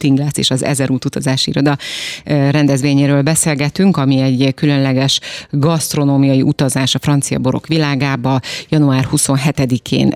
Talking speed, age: 105 wpm, 30-49